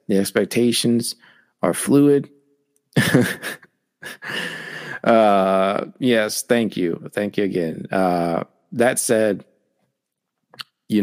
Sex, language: male, English